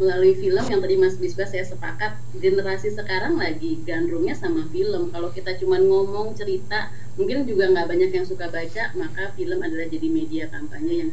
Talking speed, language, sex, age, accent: 180 wpm, Indonesian, female, 30-49, native